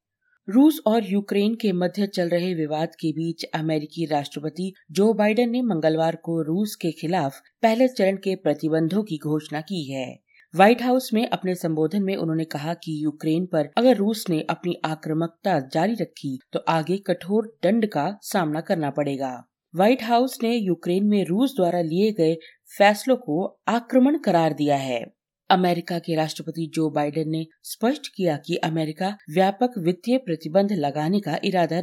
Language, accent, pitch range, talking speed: Hindi, native, 160-205 Hz, 160 wpm